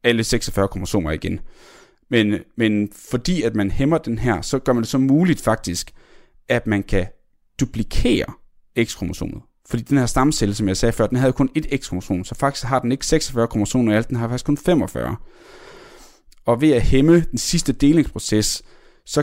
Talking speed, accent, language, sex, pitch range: 180 wpm, native, Danish, male, 105-135 Hz